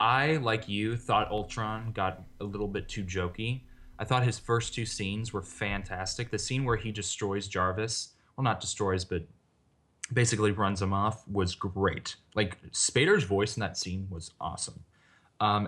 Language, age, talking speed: English, 20-39, 170 wpm